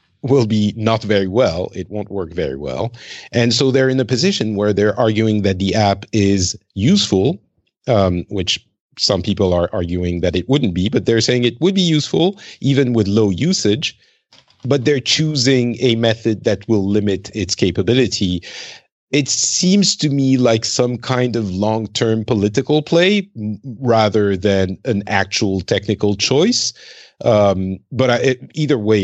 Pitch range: 95-120 Hz